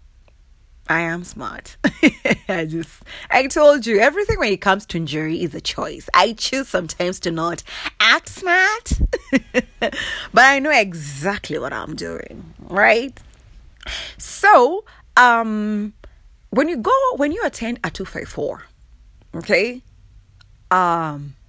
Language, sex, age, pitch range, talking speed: English, female, 30-49, 155-250 Hz, 130 wpm